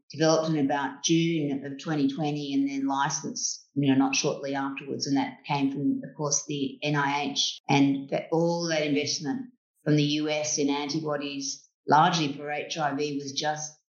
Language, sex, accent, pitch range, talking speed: English, female, Australian, 140-160 Hz, 155 wpm